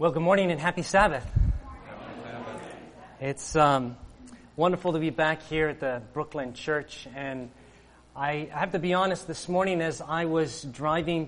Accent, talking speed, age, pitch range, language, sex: American, 155 wpm, 30-49, 140-170 Hz, English, male